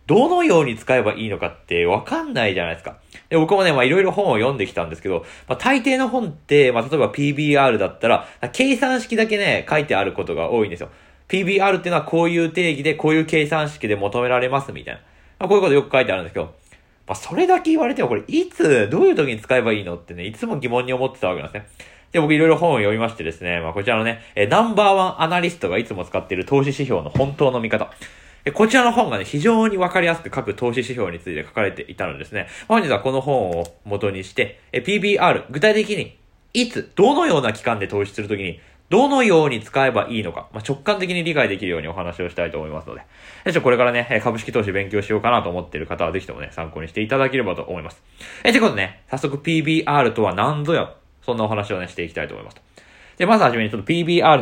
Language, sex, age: Japanese, male, 20-39